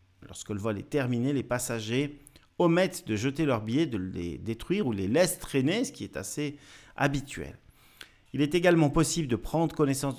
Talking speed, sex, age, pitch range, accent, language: 185 wpm, male, 50-69, 110-150 Hz, French, French